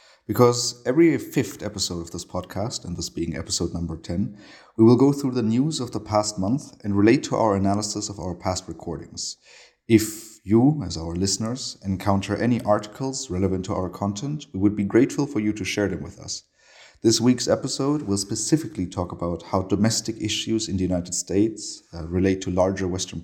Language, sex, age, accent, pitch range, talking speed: English, male, 30-49, German, 95-110 Hz, 190 wpm